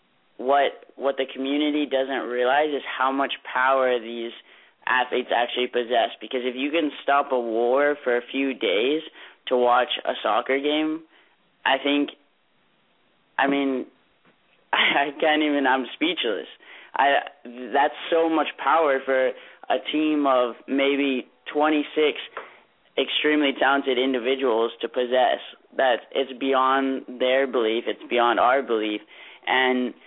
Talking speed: 130 wpm